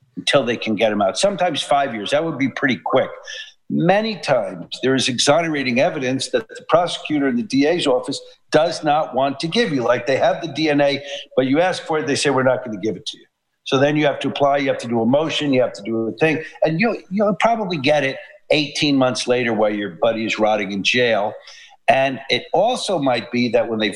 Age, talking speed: 50-69, 240 wpm